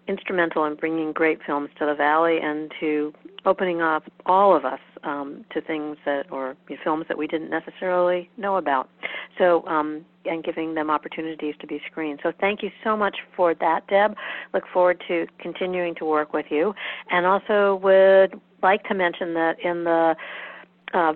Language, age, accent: English, 50-69, American